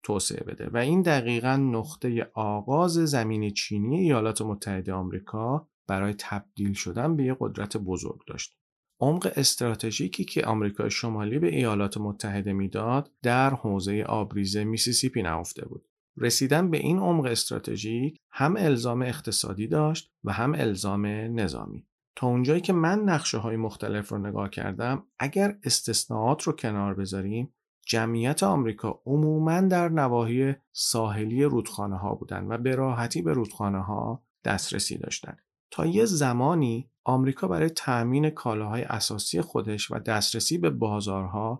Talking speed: 130 wpm